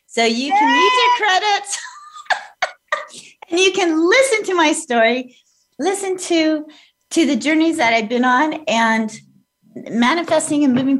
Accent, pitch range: American, 195-300 Hz